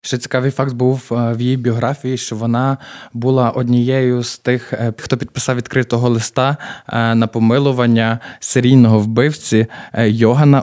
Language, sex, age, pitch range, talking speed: Ukrainian, male, 20-39, 115-135 Hz, 125 wpm